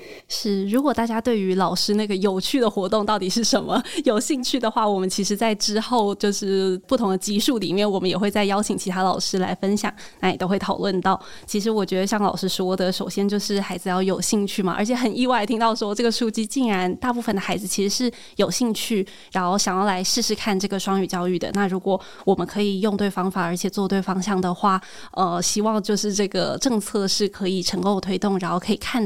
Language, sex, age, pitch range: Chinese, female, 20-39, 190-215 Hz